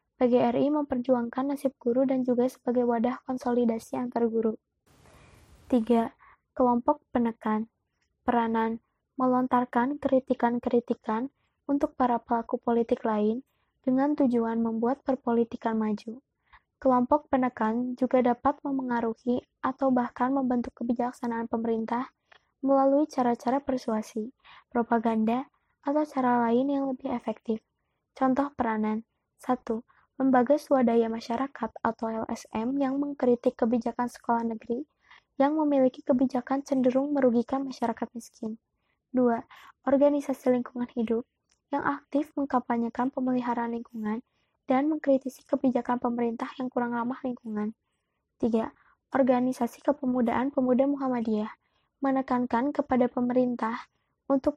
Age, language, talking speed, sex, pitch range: 20-39, Indonesian, 100 wpm, female, 235-270 Hz